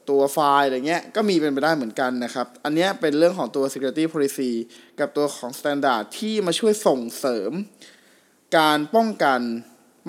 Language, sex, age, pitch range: Thai, male, 20-39, 130-175 Hz